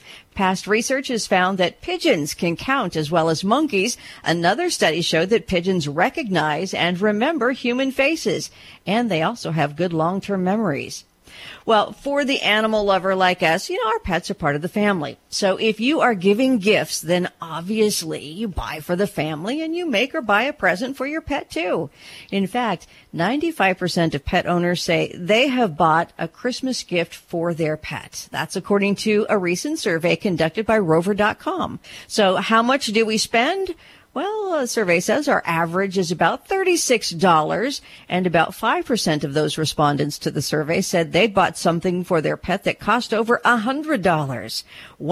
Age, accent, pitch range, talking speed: 50-69, American, 170-245 Hz, 170 wpm